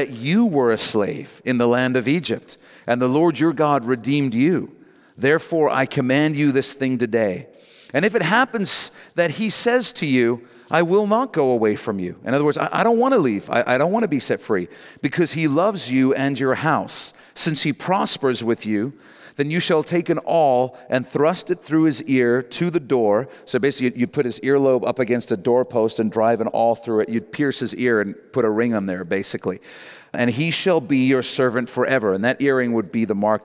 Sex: male